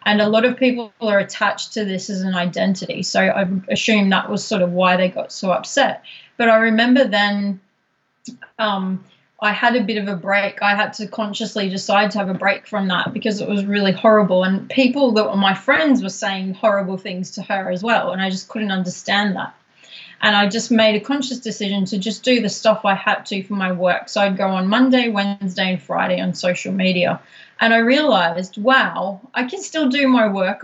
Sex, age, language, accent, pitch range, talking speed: female, 30-49, English, Australian, 190-225 Hz, 215 wpm